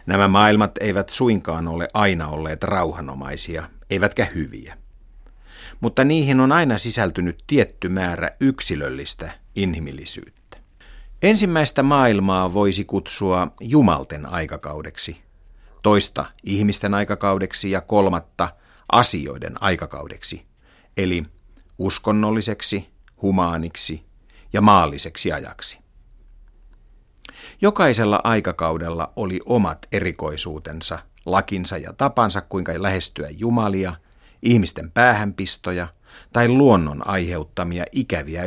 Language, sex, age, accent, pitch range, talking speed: Finnish, male, 50-69, native, 85-105 Hz, 85 wpm